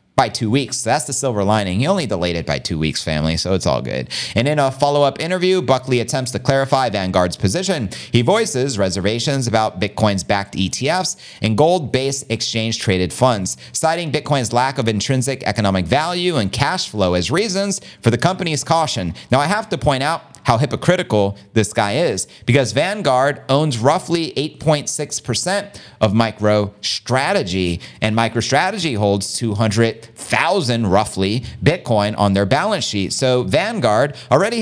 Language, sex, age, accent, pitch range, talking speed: English, male, 30-49, American, 105-170 Hz, 155 wpm